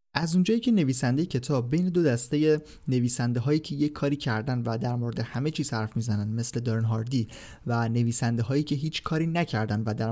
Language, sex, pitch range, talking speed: Persian, male, 120-150 Hz, 195 wpm